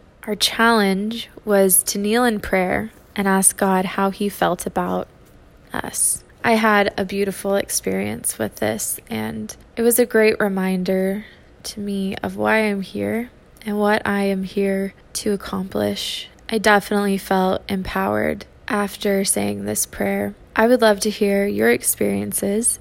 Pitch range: 190-215 Hz